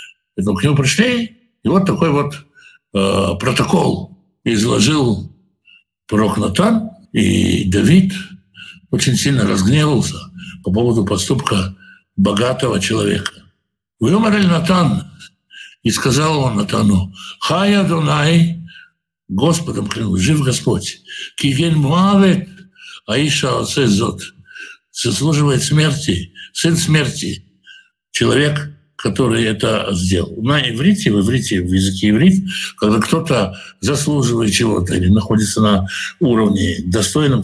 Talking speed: 100 wpm